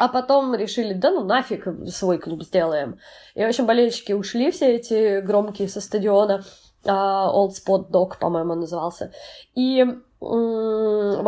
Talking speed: 140 wpm